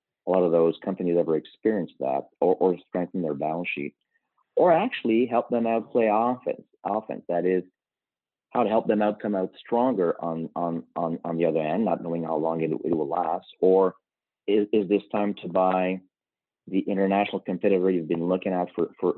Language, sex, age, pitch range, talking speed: English, male, 40-59, 85-105 Hz, 190 wpm